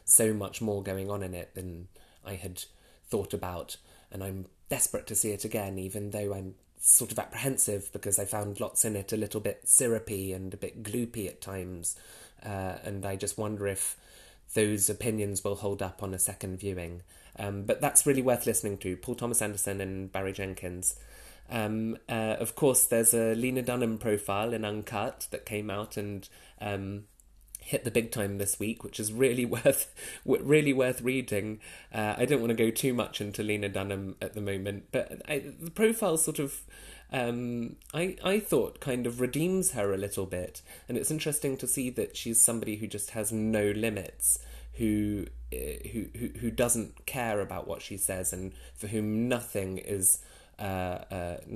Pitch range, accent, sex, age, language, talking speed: 95-115 Hz, British, male, 20-39, English, 185 wpm